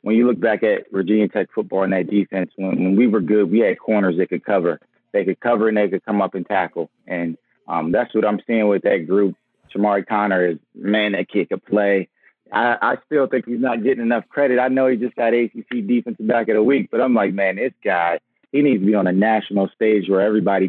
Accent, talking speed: American, 245 wpm